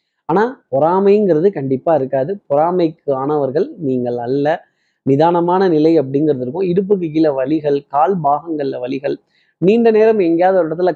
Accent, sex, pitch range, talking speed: native, male, 140-185 Hz, 125 wpm